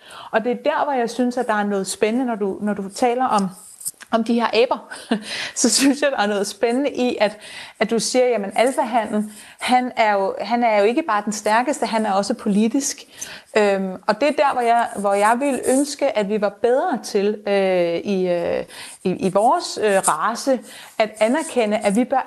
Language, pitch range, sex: Danish, 200-245 Hz, female